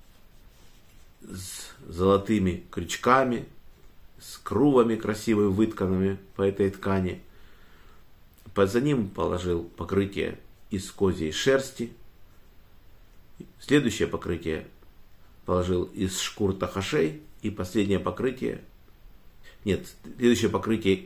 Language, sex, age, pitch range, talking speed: Russian, male, 50-69, 95-110 Hz, 85 wpm